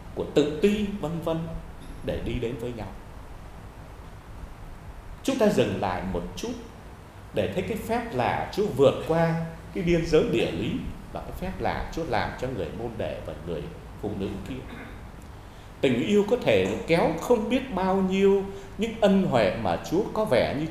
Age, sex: 30-49, male